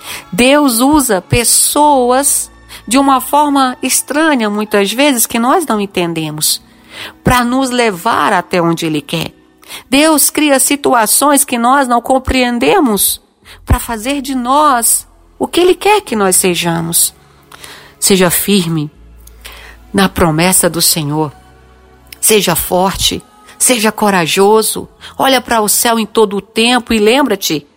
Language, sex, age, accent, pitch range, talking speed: Portuguese, female, 50-69, Brazilian, 145-230 Hz, 125 wpm